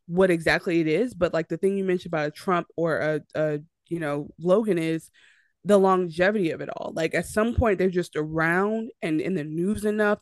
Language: English